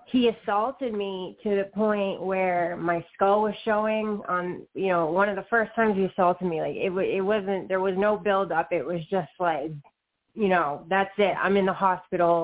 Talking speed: 205 wpm